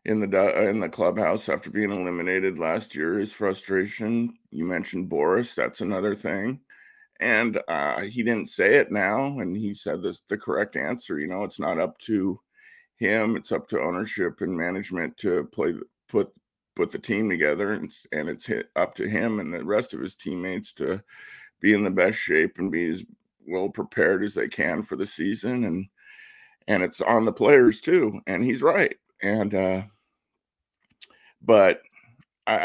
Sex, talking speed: male, 180 wpm